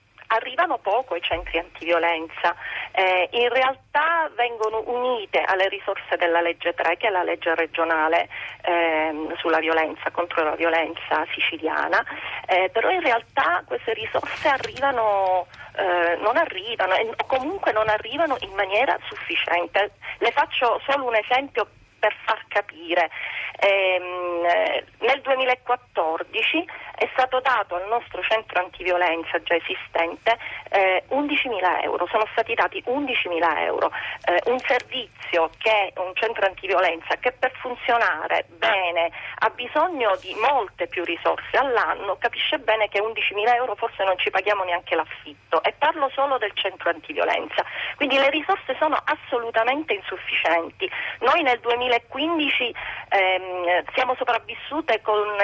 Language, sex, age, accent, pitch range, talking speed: Italian, female, 40-59, native, 175-255 Hz, 130 wpm